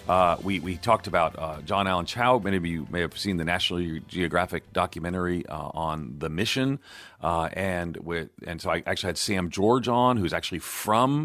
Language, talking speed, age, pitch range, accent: English, 195 wpm, 40-59, 85-115 Hz, American